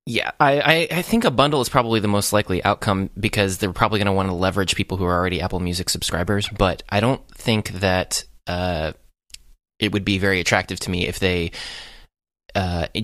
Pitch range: 90-105 Hz